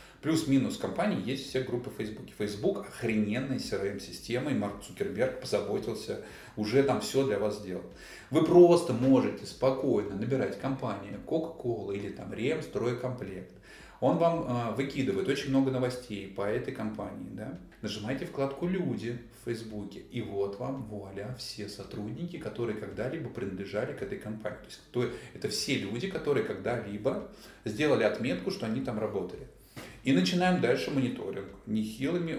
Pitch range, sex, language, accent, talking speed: 105-140 Hz, male, Russian, native, 140 wpm